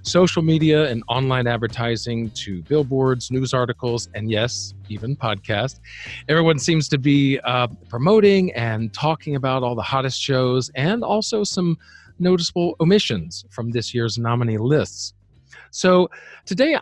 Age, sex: 40-59, male